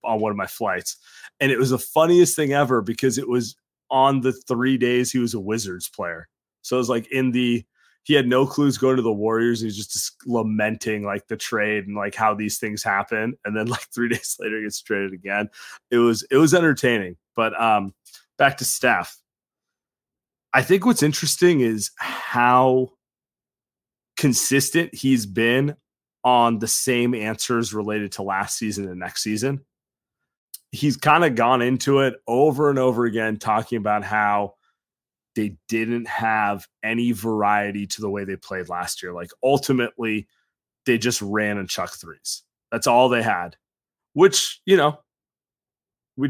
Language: English